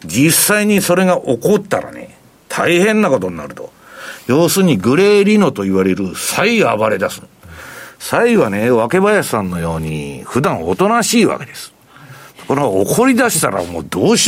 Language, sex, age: Japanese, male, 60-79